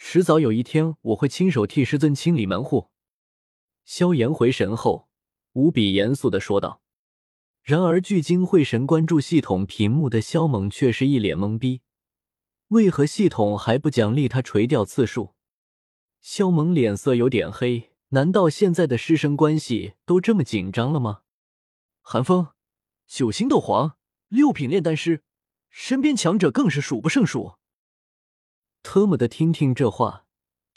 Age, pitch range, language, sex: 20-39, 115-175 Hz, Chinese, male